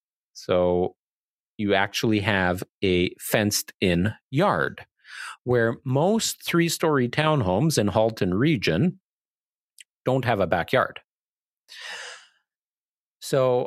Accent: American